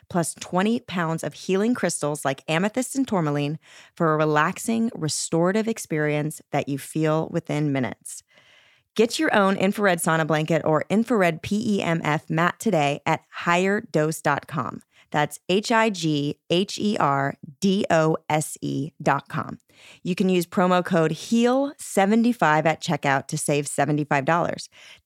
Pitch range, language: 155-200 Hz, English